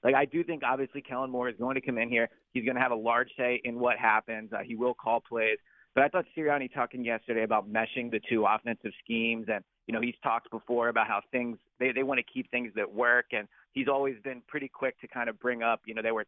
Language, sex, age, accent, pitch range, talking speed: English, male, 30-49, American, 115-135 Hz, 270 wpm